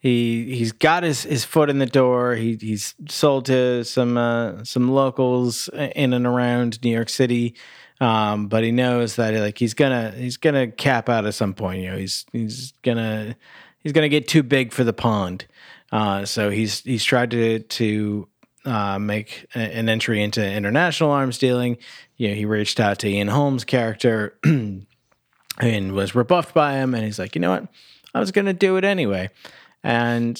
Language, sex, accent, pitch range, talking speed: English, male, American, 110-135 Hz, 185 wpm